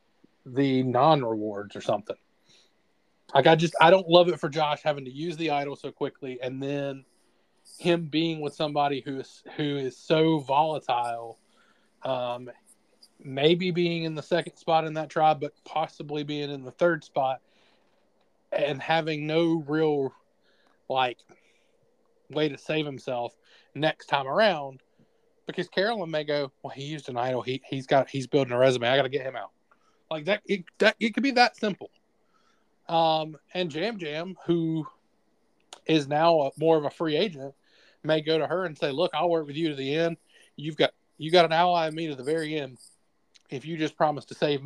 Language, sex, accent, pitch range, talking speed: English, male, American, 140-170 Hz, 185 wpm